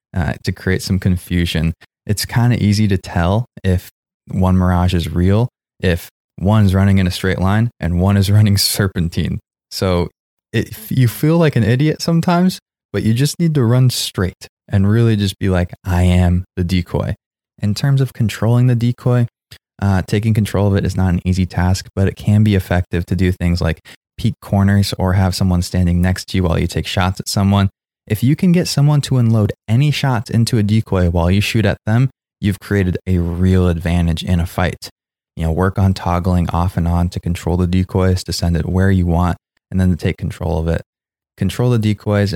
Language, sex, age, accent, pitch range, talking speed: English, male, 20-39, American, 90-110 Hz, 205 wpm